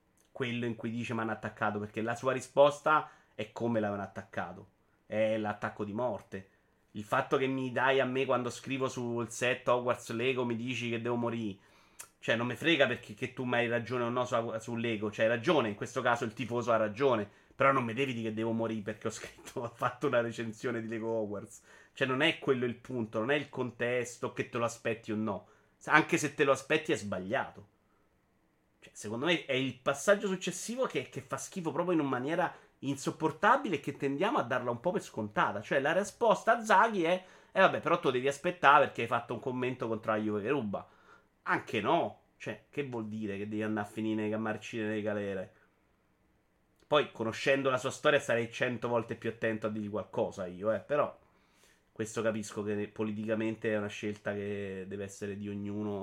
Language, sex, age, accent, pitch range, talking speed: Italian, male, 30-49, native, 110-135 Hz, 205 wpm